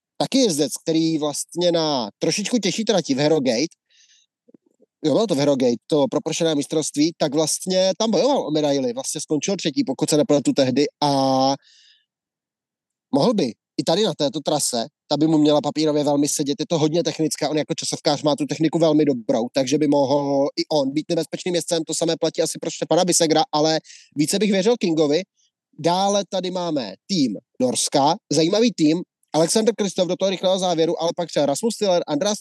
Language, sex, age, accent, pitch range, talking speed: Czech, male, 30-49, native, 150-180 Hz, 185 wpm